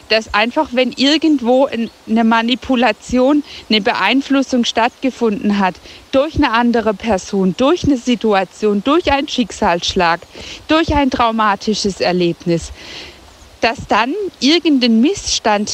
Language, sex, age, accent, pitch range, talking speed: German, female, 50-69, German, 210-270 Hz, 105 wpm